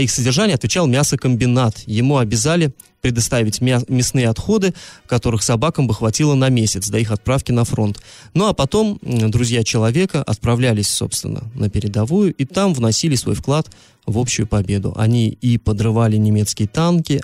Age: 20-39